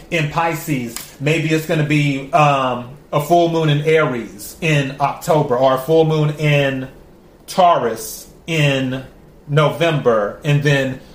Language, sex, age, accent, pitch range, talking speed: English, male, 30-49, American, 145-180 Hz, 135 wpm